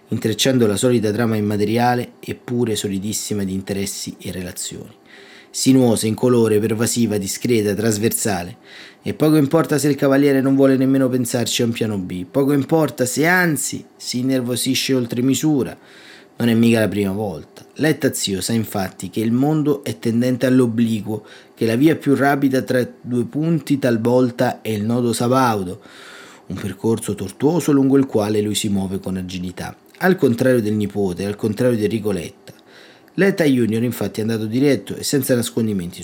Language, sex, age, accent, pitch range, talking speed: Italian, male, 30-49, native, 110-135 Hz, 160 wpm